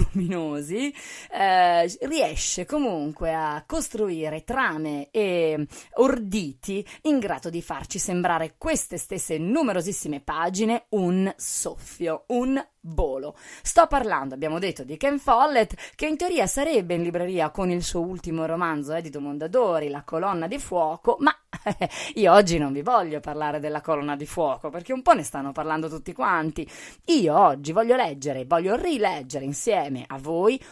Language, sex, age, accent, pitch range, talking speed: Italian, female, 20-39, native, 155-225 Hz, 145 wpm